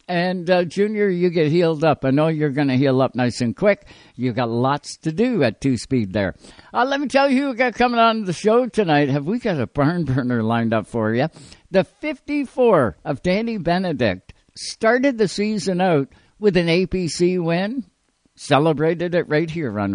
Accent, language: American, English